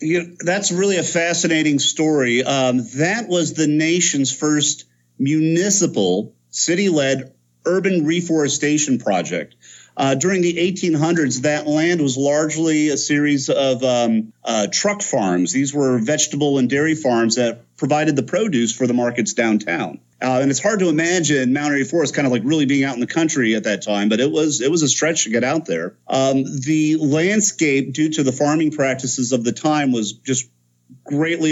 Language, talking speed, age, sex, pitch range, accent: English, 175 wpm, 40-59, male, 120-155 Hz, American